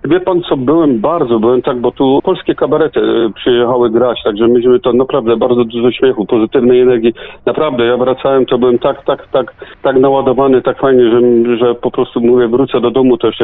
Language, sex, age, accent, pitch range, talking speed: Polish, male, 40-59, native, 110-130 Hz, 200 wpm